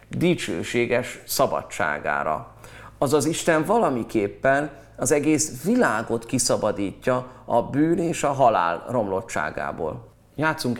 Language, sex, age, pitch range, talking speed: Hungarian, male, 30-49, 115-150 Hz, 90 wpm